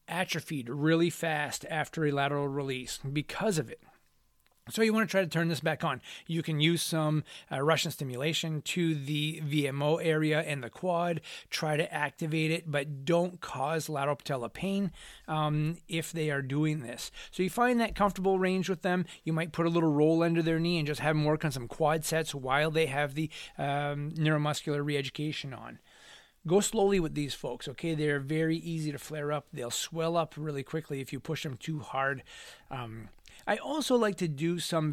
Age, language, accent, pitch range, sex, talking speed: 30-49, English, American, 145-165 Hz, male, 195 wpm